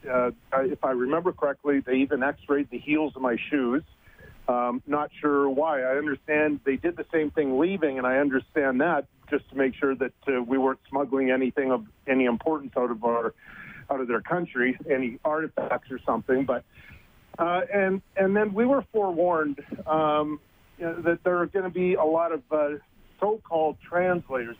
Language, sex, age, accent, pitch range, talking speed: English, male, 50-69, American, 130-160 Hz, 185 wpm